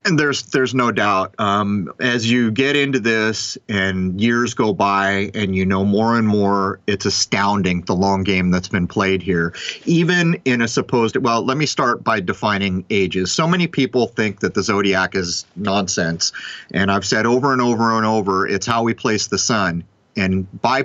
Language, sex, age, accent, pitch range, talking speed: English, male, 30-49, American, 100-120 Hz, 190 wpm